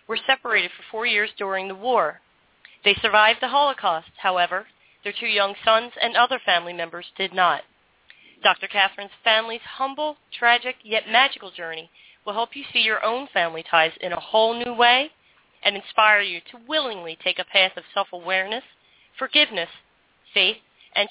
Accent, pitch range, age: American, 180-230 Hz, 40-59